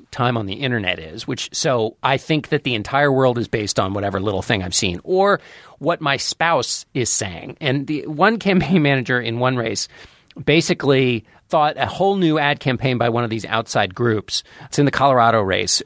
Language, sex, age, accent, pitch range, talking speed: English, male, 40-59, American, 115-155 Hz, 200 wpm